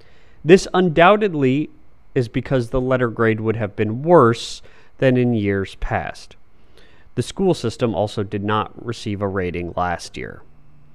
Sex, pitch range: male, 110-155 Hz